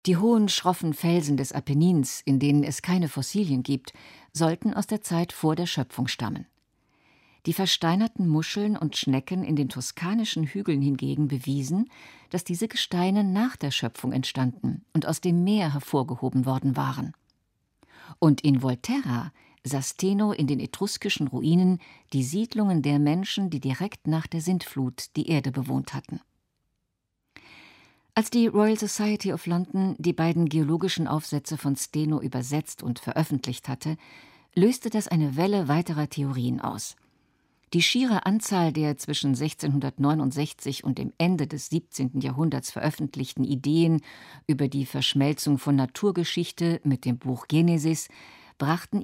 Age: 50-69